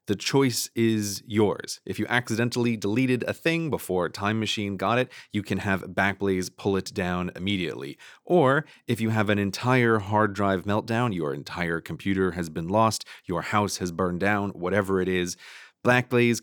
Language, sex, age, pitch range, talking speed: English, male, 30-49, 95-120 Hz, 170 wpm